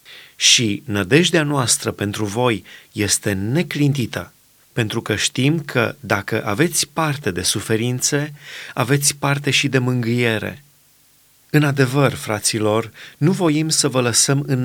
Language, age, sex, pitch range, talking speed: Romanian, 30-49, male, 120-145 Hz, 125 wpm